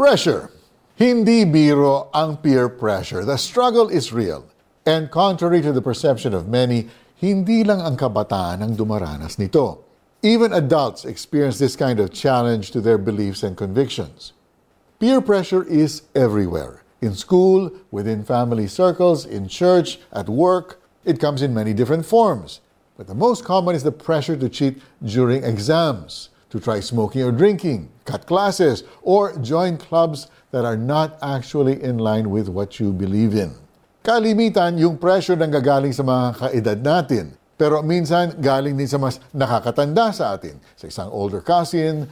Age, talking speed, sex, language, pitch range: 50-69, 155 wpm, male, Filipino, 115-170 Hz